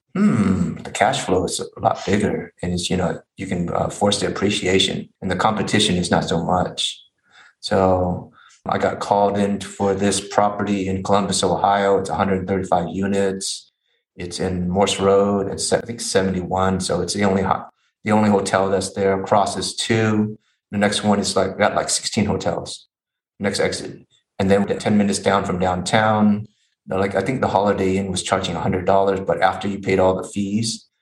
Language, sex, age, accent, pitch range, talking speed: English, male, 30-49, American, 95-100 Hz, 185 wpm